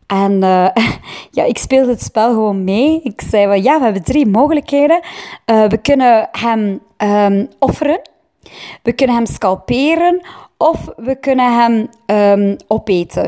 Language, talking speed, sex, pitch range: Dutch, 130 wpm, female, 195-235 Hz